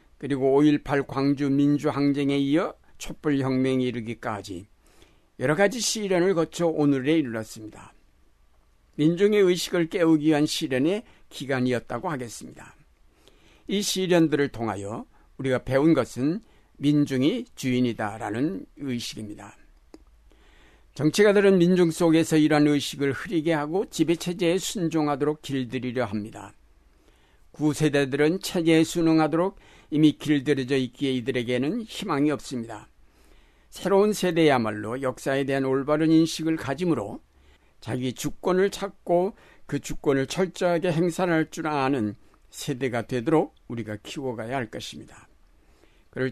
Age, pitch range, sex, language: 60-79, 125-160 Hz, male, Korean